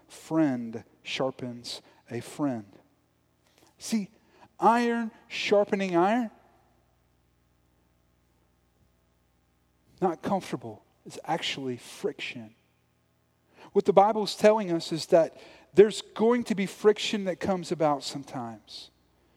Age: 40-59